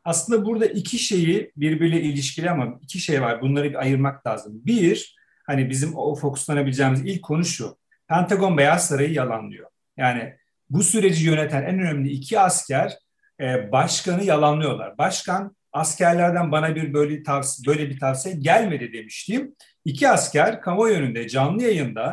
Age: 40-59